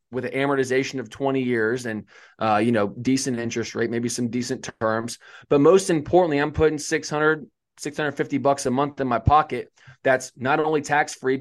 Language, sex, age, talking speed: English, male, 20-39, 180 wpm